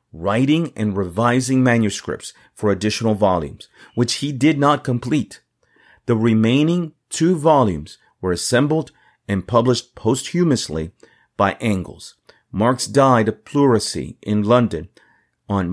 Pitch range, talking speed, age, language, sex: 110-140 Hz, 115 wpm, 40-59, English, male